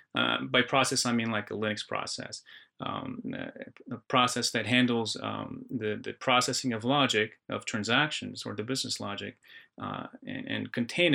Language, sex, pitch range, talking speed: English, male, 110-130 Hz, 165 wpm